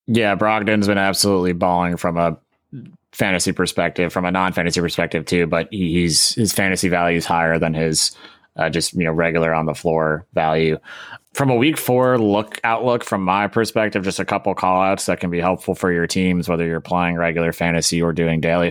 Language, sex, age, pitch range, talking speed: English, male, 20-39, 85-95 Hz, 190 wpm